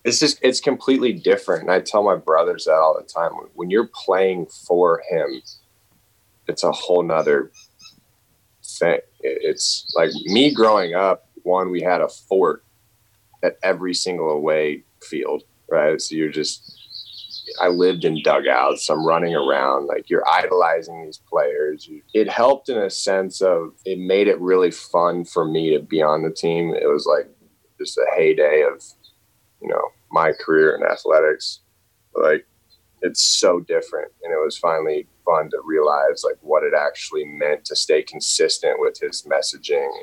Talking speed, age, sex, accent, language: 165 wpm, 20-39, male, American, English